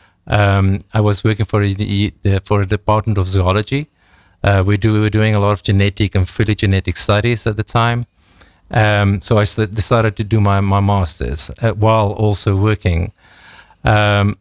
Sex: male